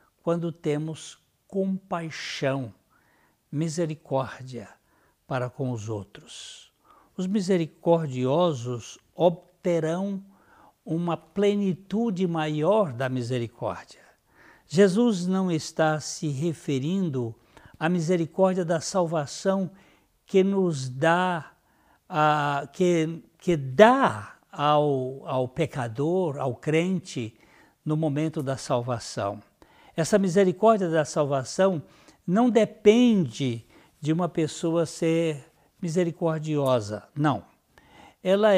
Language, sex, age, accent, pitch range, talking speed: Portuguese, male, 60-79, Brazilian, 145-190 Hz, 80 wpm